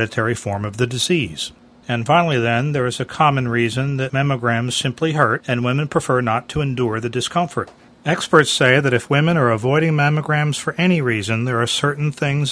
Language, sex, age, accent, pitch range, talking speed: English, male, 40-59, American, 115-145 Hz, 185 wpm